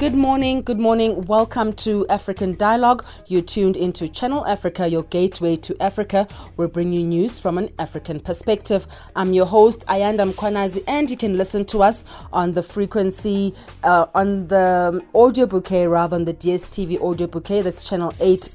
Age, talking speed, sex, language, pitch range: 30-49, 180 wpm, female, English, 170-210 Hz